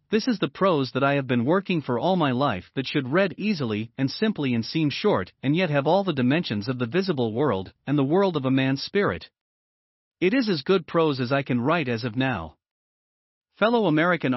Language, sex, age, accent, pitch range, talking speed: German, male, 40-59, American, 130-185 Hz, 220 wpm